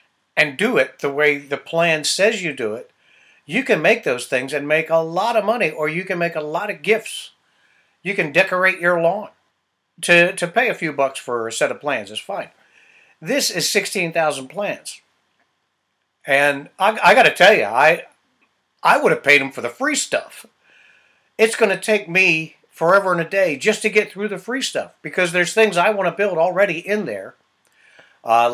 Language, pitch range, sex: English, 140-190 Hz, male